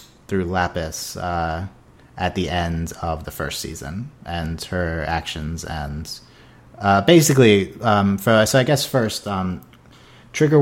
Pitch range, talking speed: 85-110 Hz, 135 wpm